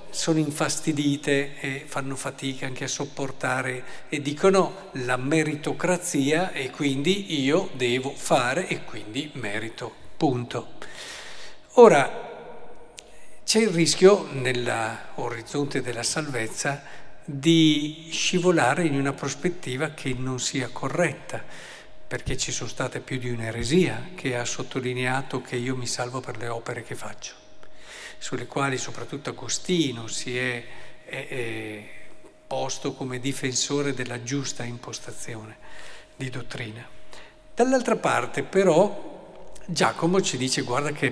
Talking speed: 115 wpm